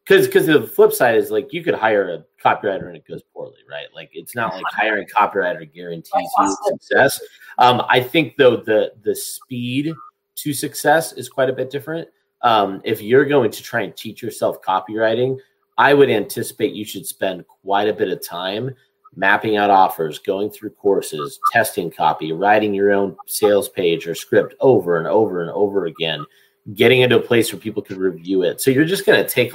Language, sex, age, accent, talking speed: English, male, 30-49, American, 200 wpm